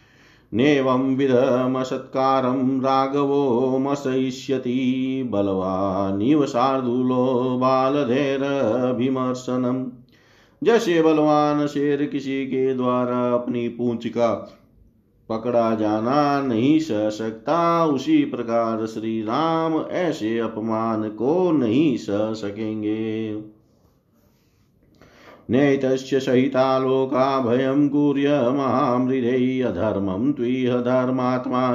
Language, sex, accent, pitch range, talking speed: Hindi, male, native, 115-135 Hz, 75 wpm